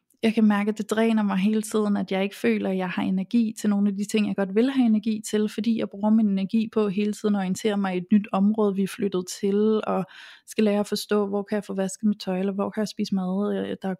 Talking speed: 285 wpm